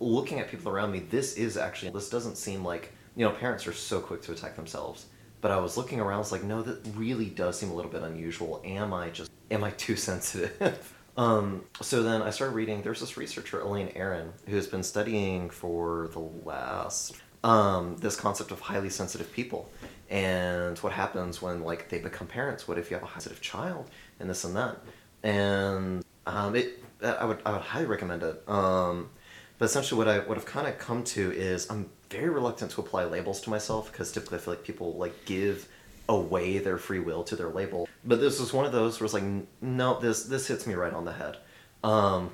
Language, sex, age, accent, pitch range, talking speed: English, male, 30-49, American, 90-110 Hz, 215 wpm